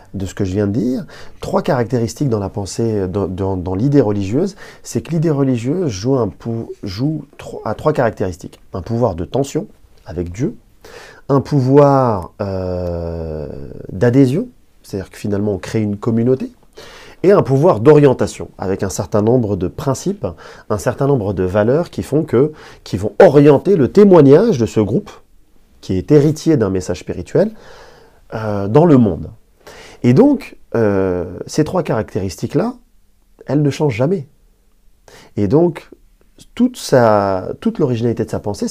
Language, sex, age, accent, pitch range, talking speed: French, male, 30-49, French, 100-150 Hz, 150 wpm